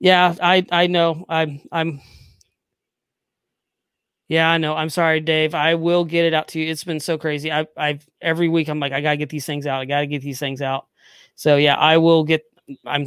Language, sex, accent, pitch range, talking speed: English, male, American, 155-185 Hz, 220 wpm